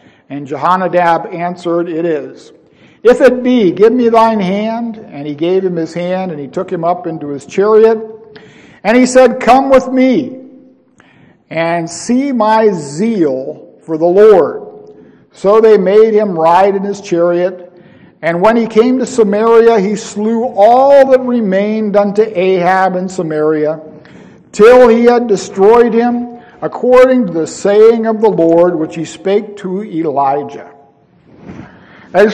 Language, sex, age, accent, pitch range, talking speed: English, male, 50-69, American, 175-235 Hz, 150 wpm